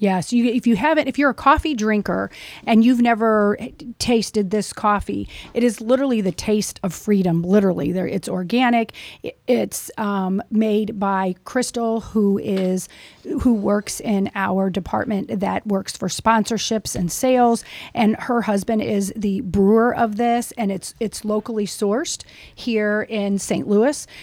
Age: 40-59